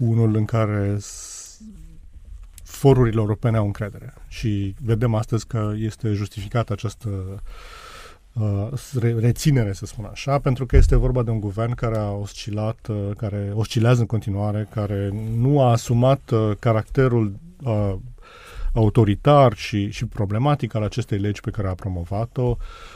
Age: 30-49